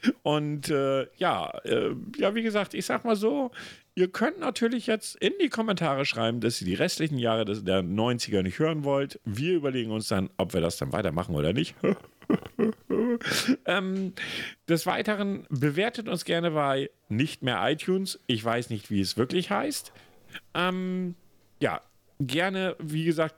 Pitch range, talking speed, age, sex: 115-175 Hz, 160 wpm, 40-59, male